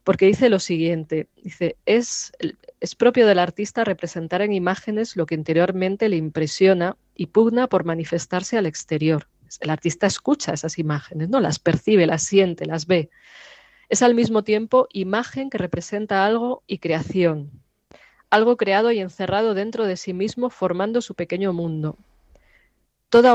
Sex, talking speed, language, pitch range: female, 150 wpm, Spanish, 170-215 Hz